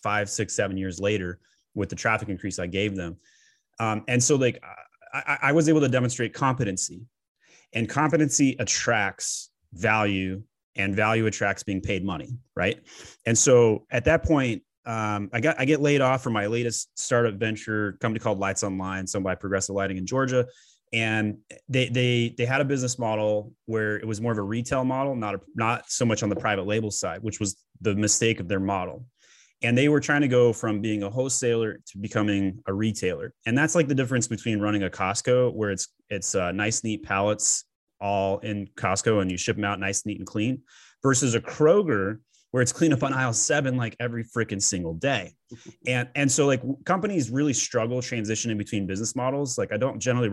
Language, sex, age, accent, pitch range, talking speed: English, male, 30-49, American, 100-125 Hz, 200 wpm